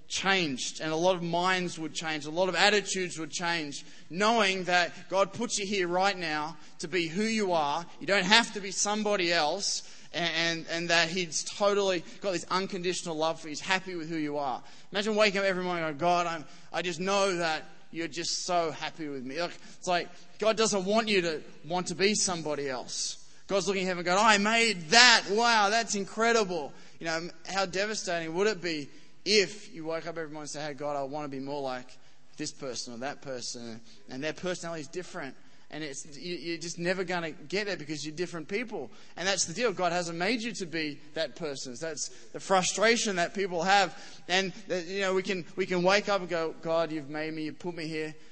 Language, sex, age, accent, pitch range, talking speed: English, male, 20-39, Australian, 155-195 Hz, 225 wpm